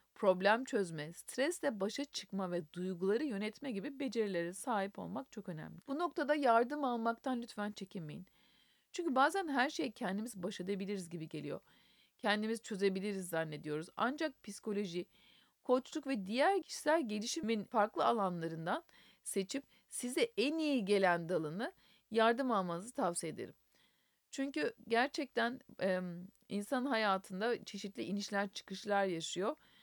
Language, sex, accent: Turkish, female, native